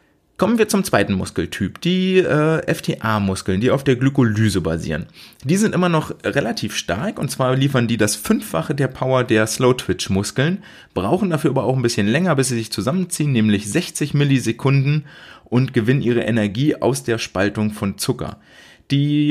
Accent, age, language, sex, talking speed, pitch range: German, 30-49, German, male, 165 wpm, 105-150 Hz